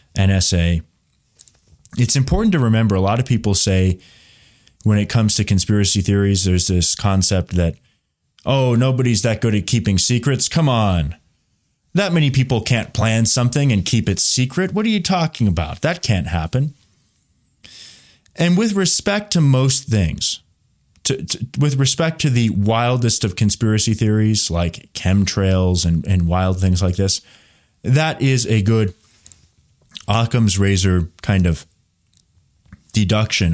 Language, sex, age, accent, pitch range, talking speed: English, male, 20-39, American, 95-125 Hz, 145 wpm